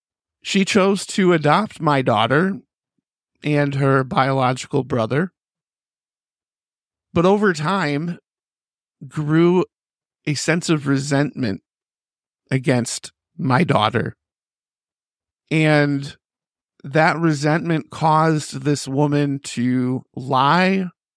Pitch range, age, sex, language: 135-160 Hz, 50-69, male, English